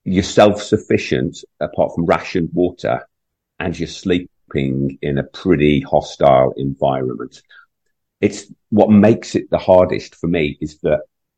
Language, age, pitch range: English, 50-69, 75-90 Hz